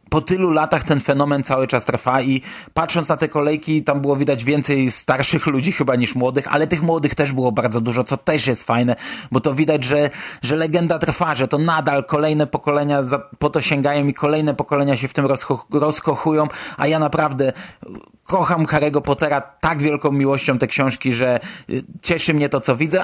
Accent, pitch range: native, 125-155 Hz